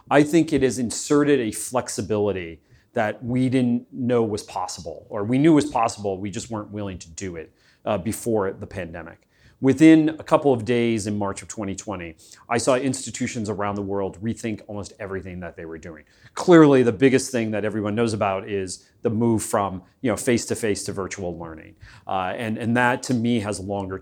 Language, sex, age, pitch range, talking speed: English, male, 30-49, 100-125 Hz, 195 wpm